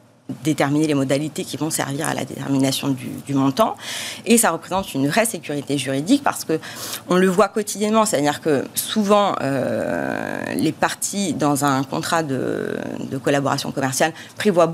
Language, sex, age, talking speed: French, female, 40-59, 155 wpm